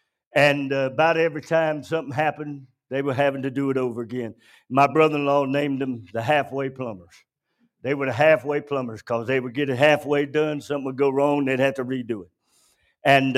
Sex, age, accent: male, 60-79, American